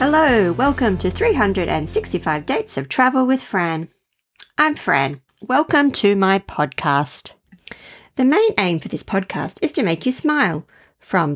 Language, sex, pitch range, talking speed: English, female, 180-260 Hz, 145 wpm